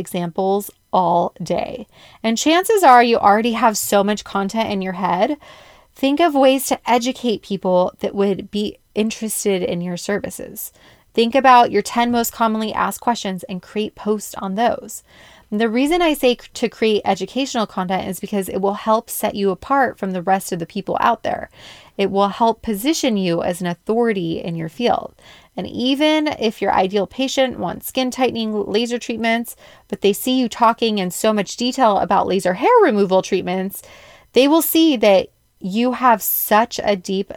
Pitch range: 195-245 Hz